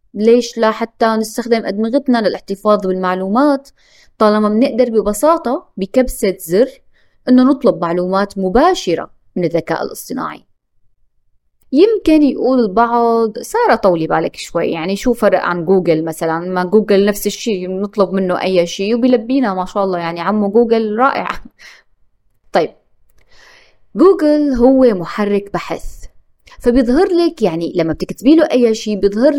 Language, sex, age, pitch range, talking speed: Arabic, female, 20-39, 175-255 Hz, 125 wpm